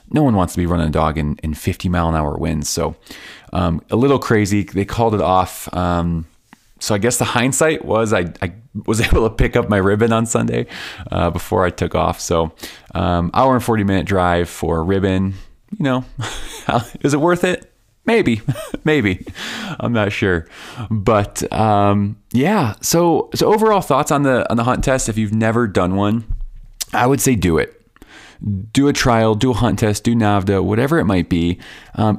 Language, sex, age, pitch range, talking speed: English, male, 20-39, 90-120 Hz, 190 wpm